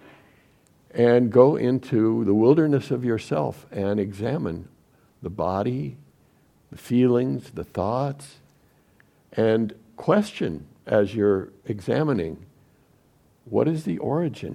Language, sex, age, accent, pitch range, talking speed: English, male, 60-79, American, 110-140 Hz, 100 wpm